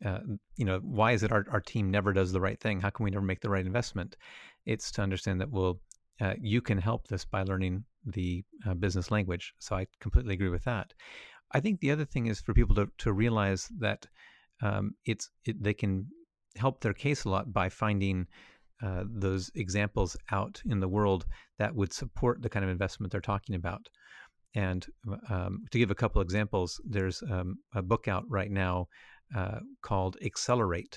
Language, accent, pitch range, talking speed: English, American, 95-115 Hz, 200 wpm